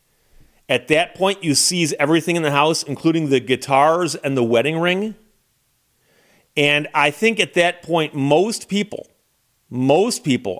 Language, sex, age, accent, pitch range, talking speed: English, male, 40-59, American, 135-180 Hz, 145 wpm